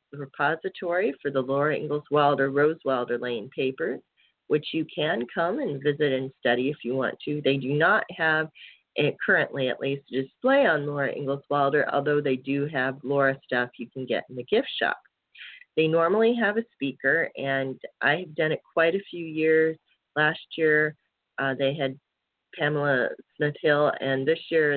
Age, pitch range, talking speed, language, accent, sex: 40-59, 135-160 Hz, 175 wpm, English, American, female